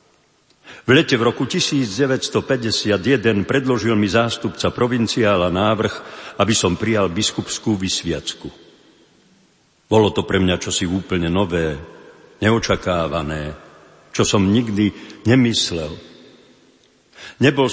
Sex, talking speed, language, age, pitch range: male, 95 wpm, Slovak, 50-69, 100-125 Hz